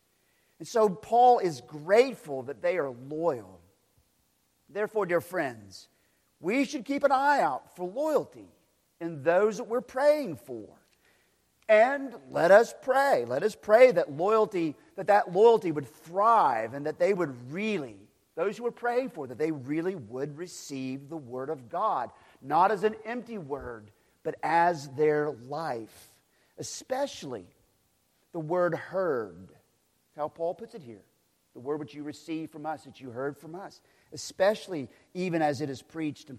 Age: 50-69